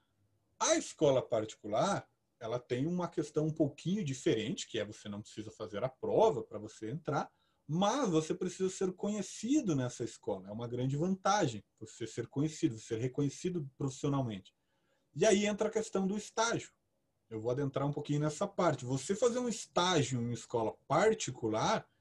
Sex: male